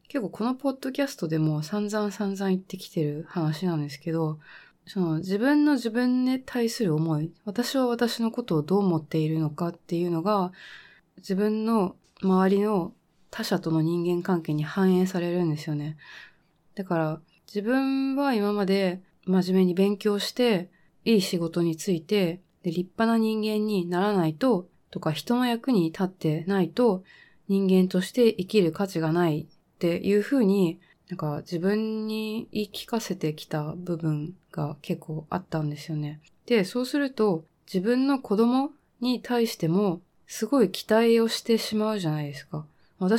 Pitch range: 165-220 Hz